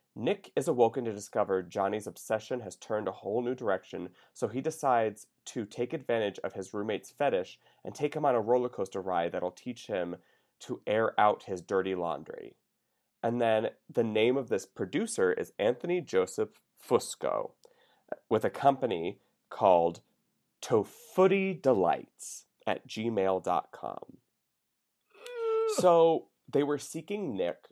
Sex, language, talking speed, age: male, English, 140 wpm, 30-49